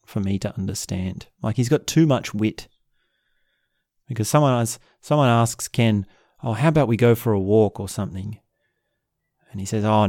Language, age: English, 30-49